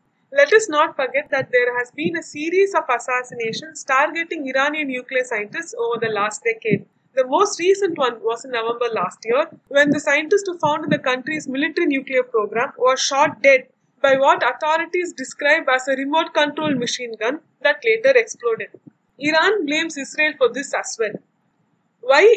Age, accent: 20-39, Indian